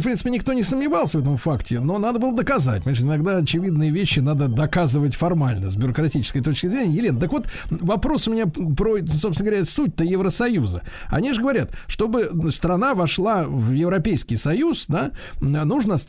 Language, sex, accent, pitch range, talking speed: Russian, male, native, 130-185 Hz, 165 wpm